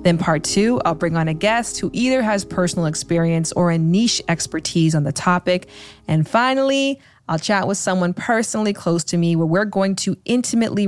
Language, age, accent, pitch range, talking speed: English, 20-39, American, 170-215 Hz, 195 wpm